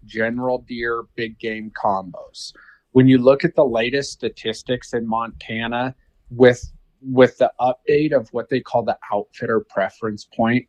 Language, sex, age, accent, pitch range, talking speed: English, male, 40-59, American, 115-140 Hz, 145 wpm